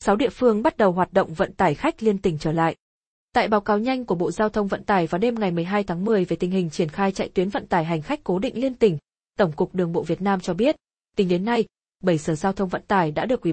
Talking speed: 290 wpm